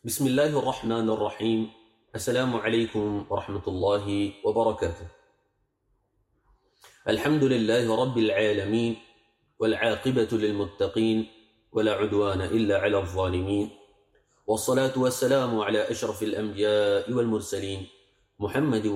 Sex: male